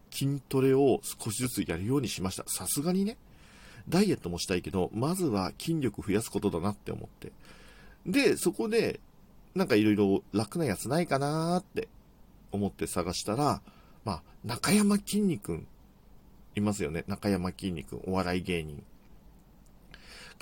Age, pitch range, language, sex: 50-69, 95-155 Hz, Japanese, male